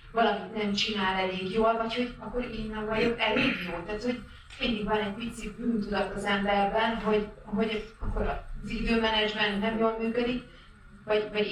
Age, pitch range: 30-49, 185-225 Hz